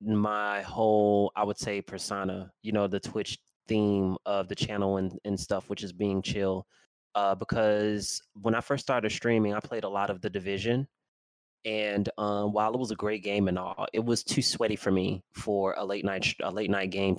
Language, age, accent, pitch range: English, 20-39, American, 95-110 Hz